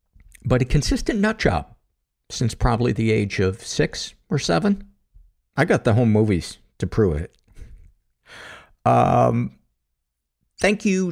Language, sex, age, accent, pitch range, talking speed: English, male, 50-69, American, 95-125 Hz, 130 wpm